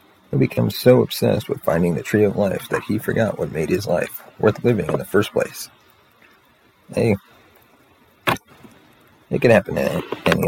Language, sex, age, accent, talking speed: English, male, 30-49, American, 165 wpm